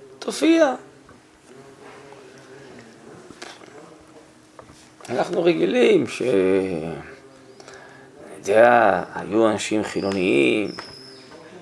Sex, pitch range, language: male, 110-155 Hz, Hebrew